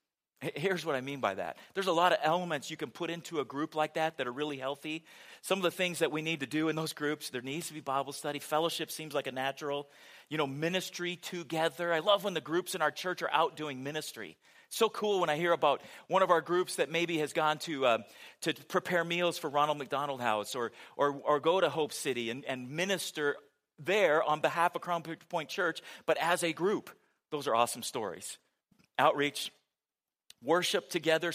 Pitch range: 145-180 Hz